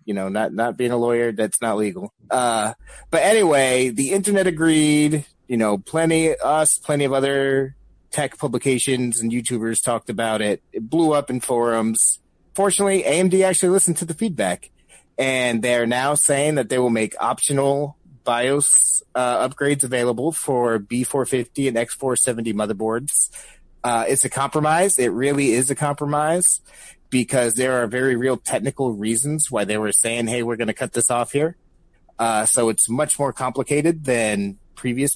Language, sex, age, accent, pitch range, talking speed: English, male, 30-49, American, 115-145 Hz, 165 wpm